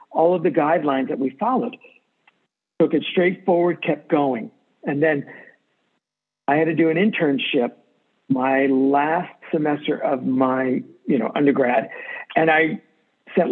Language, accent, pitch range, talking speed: English, American, 145-180 Hz, 140 wpm